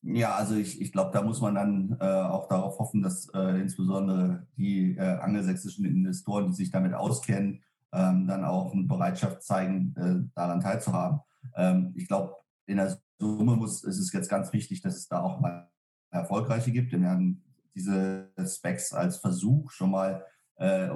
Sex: male